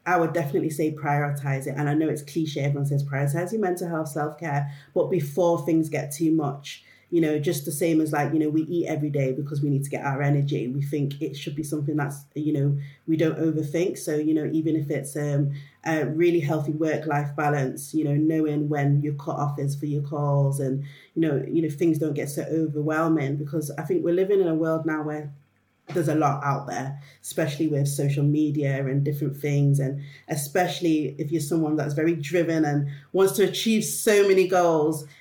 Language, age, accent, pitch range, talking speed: English, 30-49, British, 145-160 Hz, 215 wpm